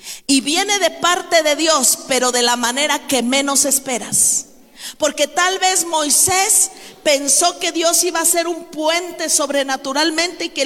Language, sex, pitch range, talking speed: Spanish, female, 280-345 Hz, 160 wpm